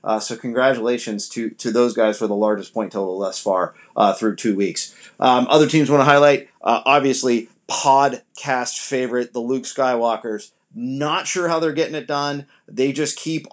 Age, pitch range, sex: 30-49, 110-145 Hz, male